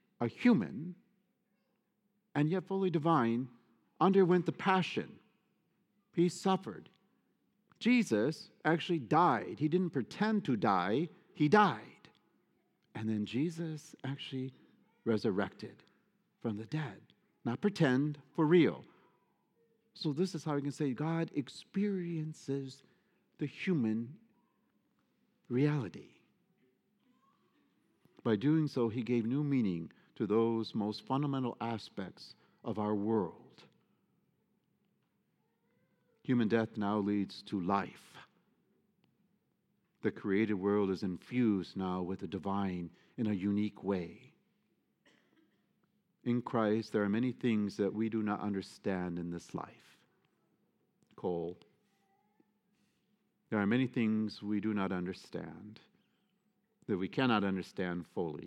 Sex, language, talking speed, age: male, English, 110 wpm, 50-69